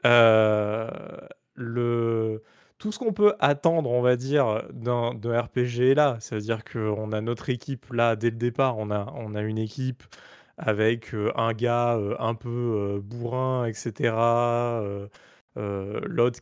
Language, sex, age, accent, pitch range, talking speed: French, male, 20-39, French, 110-130 Hz, 155 wpm